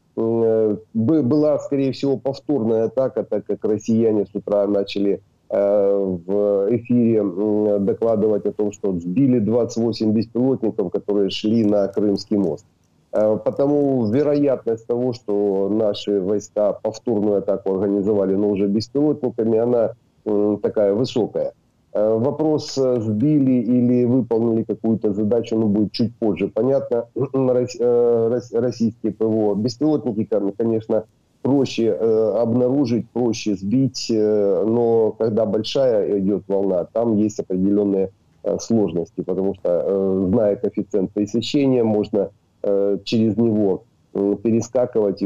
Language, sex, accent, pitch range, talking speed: Ukrainian, male, native, 100-120 Hz, 100 wpm